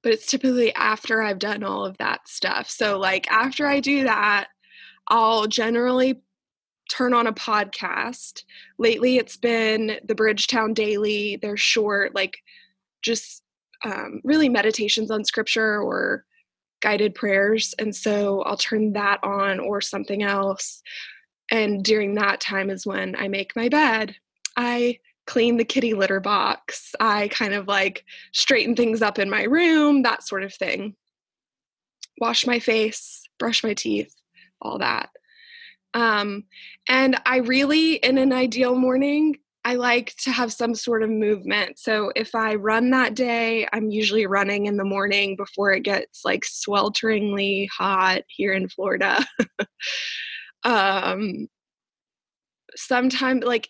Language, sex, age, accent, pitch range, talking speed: English, female, 20-39, American, 205-250 Hz, 140 wpm